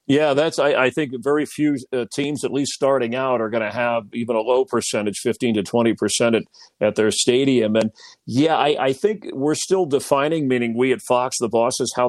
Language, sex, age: English, male, 50-69